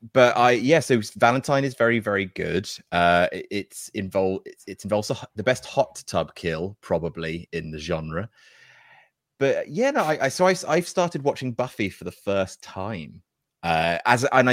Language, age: English, 30-49